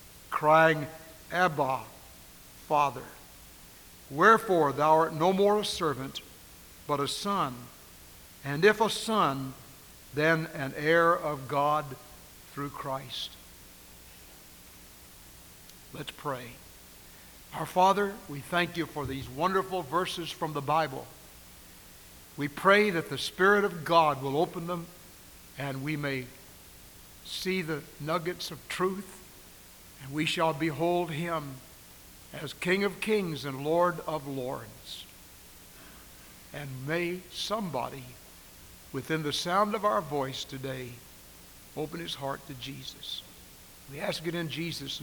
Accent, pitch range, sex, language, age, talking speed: American, 135-175 Hz, male, English, 60-79, 115 wpm